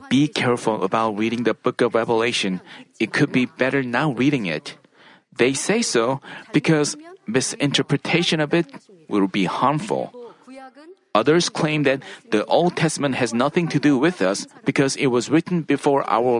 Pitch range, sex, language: 140-205 Hz, male, Korean